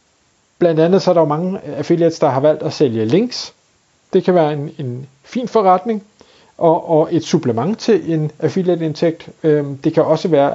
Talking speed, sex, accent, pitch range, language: 180 wpm, male, native, 145-185 Hz, Danish